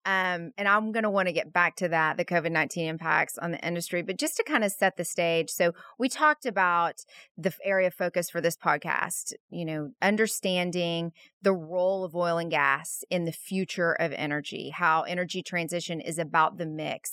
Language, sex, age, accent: English, female, 30-49, American